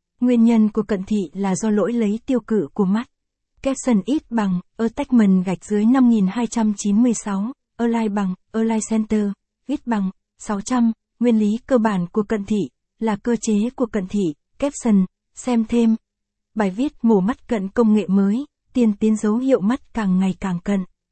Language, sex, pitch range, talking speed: Vietnamese, female, 200-235 Hz, 170 wpm